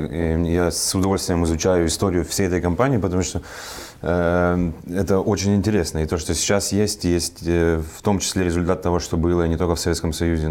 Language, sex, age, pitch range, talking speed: Russian, male, 20-39, 80-90 Hz, 175 wpm